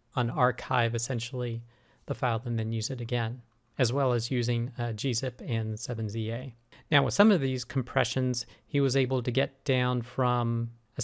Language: English